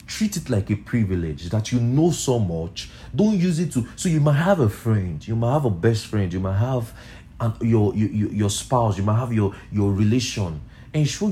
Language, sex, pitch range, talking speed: English, male, 105-145 Hz, 215 wpm